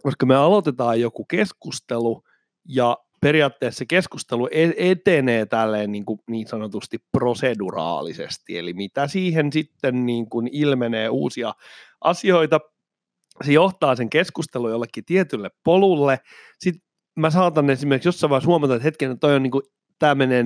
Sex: male